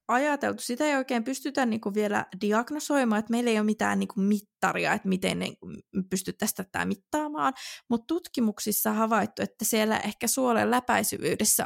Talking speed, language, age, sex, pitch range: 145 wpm, Finnish, 20-39, female, 190-235 Hz